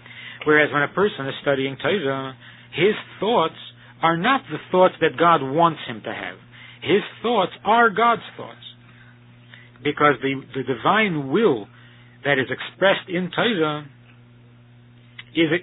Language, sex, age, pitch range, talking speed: English, male, 50-69, 125-170 Hz, 135 wpm